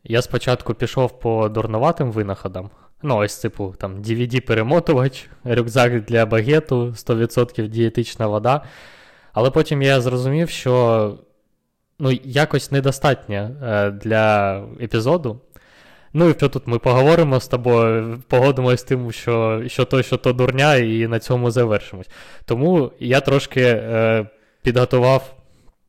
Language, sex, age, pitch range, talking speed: Ukrainian, male, 20-39, 115-135 Hz, 125 wpm